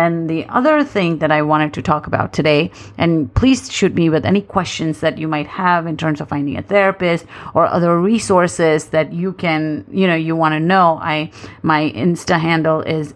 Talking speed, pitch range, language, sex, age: 205 wpm, 150-170 Hz, English, female, 30-49